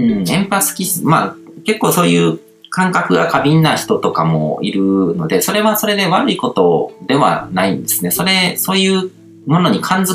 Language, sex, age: Japanese, male, 40-59